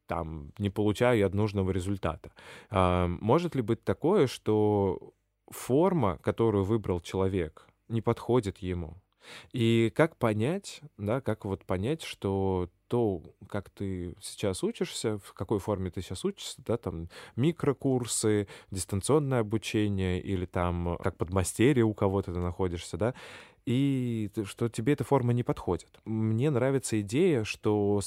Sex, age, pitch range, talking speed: male, 20-39, 95-120 Hz, 135 wpm